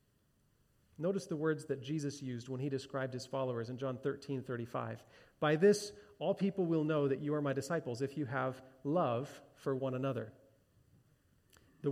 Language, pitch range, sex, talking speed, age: English, 130-160 Hz, male, 170 wpm, 40-59